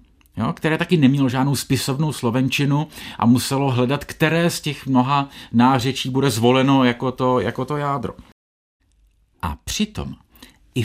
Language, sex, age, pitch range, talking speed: Czech, male, 50-69, 100-155 Hz, 140 wpm